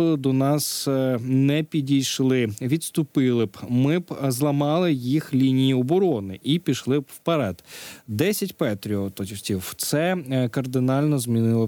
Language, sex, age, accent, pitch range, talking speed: Ukrainian, male, 20-39, native, 115-145 Hz, 110 wpm